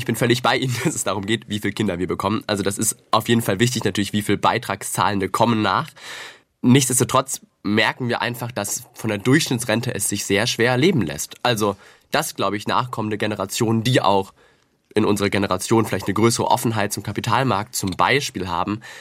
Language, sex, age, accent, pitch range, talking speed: German, male, 20-39, German, 100-120 Hz, 195 wpm